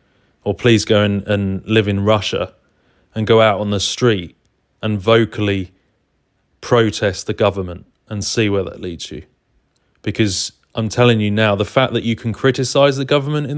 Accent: British